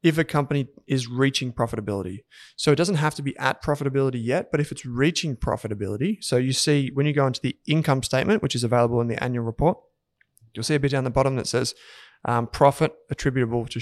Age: 20-39